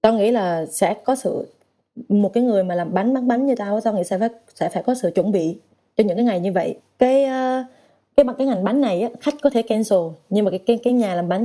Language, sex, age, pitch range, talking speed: Vietnamese, female, 20-39, 185-240 Hz, 260 wpm